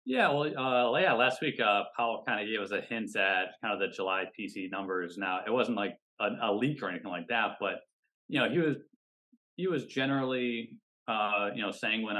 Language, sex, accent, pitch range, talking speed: English, male, American, 95-120 Hz, 210 wpm